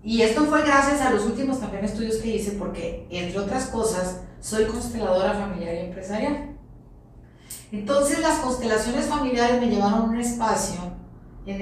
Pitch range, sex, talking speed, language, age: 195-245 Hz, female, 155 wpm, Spanish, 40-59